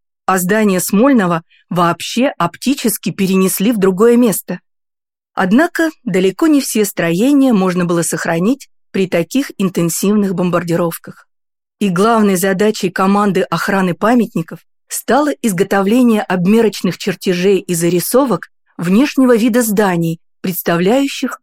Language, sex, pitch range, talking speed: Russian, female, 180-230 Hz, 105 wpm